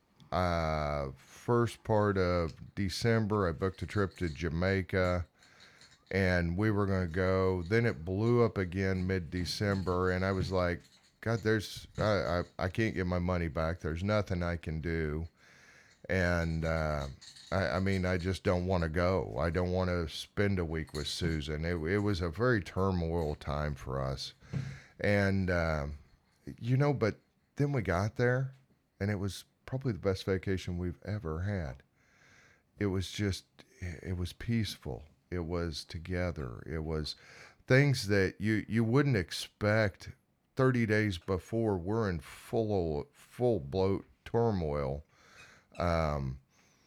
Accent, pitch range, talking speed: American, 80-105 Hz, 150 wpm